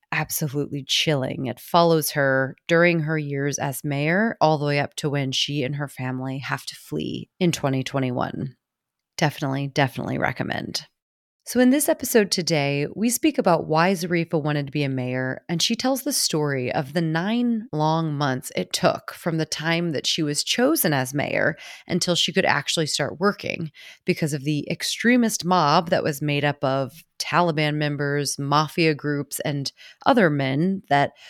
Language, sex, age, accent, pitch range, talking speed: English, female, 30-49, American, 145-195 Hz, 170 wpm